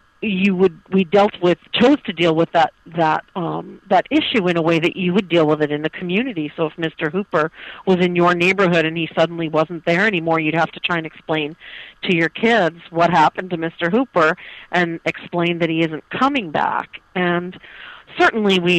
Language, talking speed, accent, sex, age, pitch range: English, 215 wpm, American, female, 40-59, 160-190 Hz